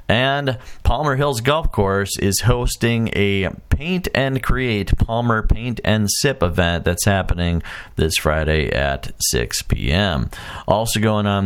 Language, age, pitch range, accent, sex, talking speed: English, 40-59, 85-115 Hz, American, male, 135 wpm